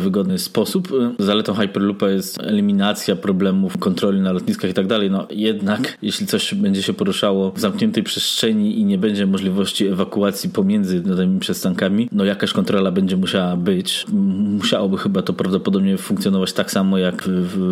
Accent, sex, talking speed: native, male, 165 wpm